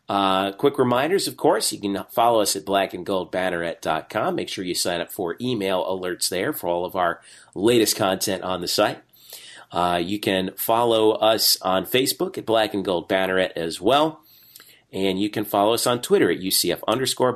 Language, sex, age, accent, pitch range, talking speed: English, male, 40-59, American, 95-130 Hz, 185 wpm